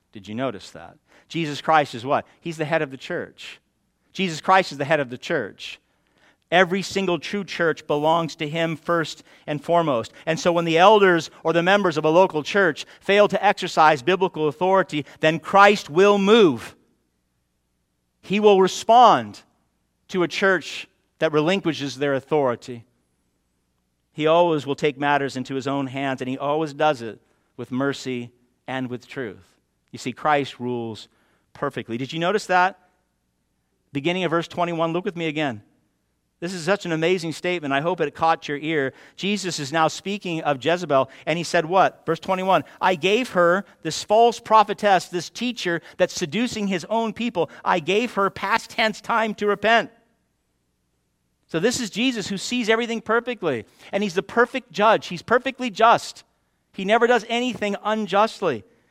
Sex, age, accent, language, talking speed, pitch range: male, 50-69, American, English, 170 wpm, 140-195 Hz